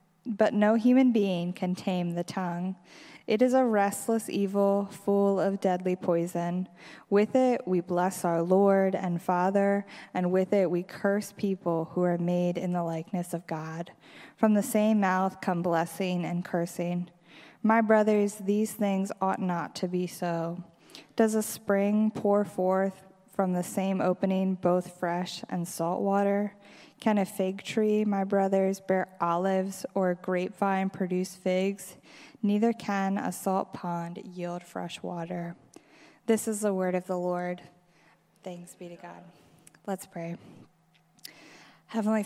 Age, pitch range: 20-39, 180-205 Hz